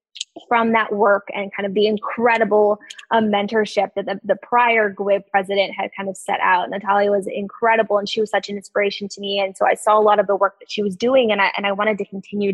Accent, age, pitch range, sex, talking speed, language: American, 20-39, 195-220 Hz, female, 250 wpm, English